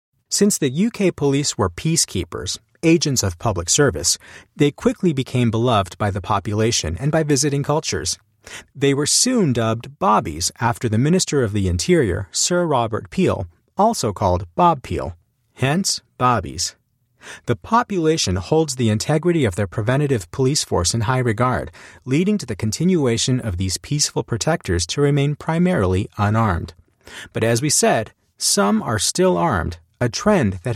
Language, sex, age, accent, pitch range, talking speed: English, male, 40-59, American, 100-150 Hz, 150 wpm